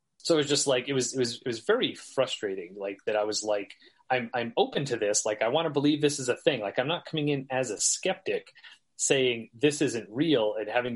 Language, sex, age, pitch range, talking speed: English, male, 30-49, 105-145 Hz, 250 wpm